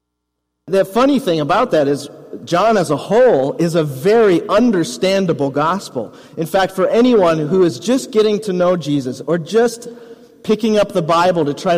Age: 40-59